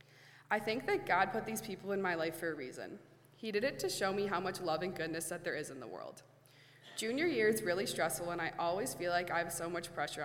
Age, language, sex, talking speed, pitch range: 20-39, English, female, 265 wpm, 165-205 Hz